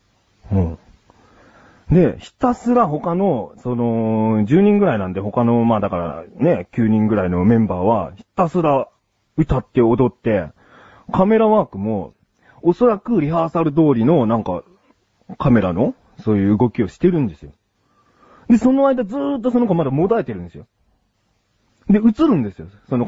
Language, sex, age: Japanese, male, 30-49